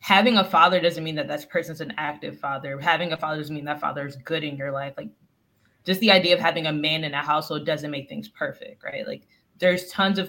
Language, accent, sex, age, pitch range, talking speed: English, American, female, 20-39, 150-180 Hz, 250 wpm